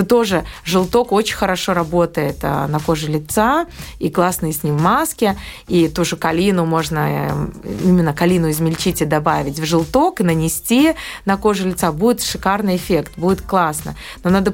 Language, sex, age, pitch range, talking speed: Russian, female, 20-39, 165-205 Hz, 150 wpm